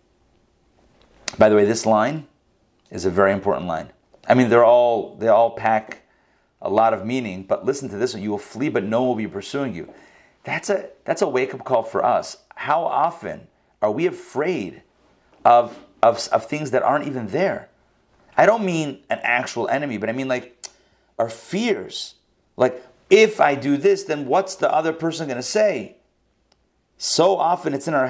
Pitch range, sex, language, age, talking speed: 120-185 Hz, male, English, 40-59, 185 wpm